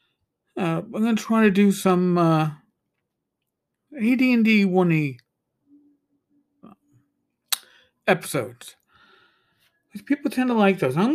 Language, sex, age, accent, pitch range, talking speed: English, male, 50-69, American, 150-225 Hz, 90 wpm